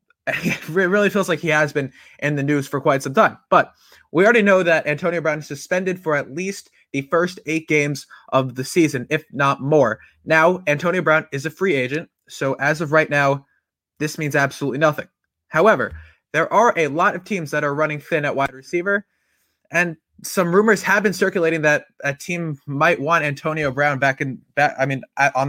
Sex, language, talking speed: male, English, 200 wpm